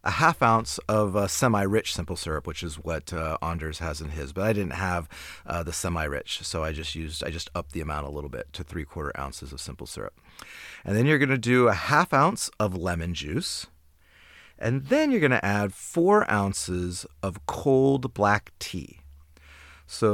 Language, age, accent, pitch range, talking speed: English, 30-49, American, 85-115 Hz, 195 wpm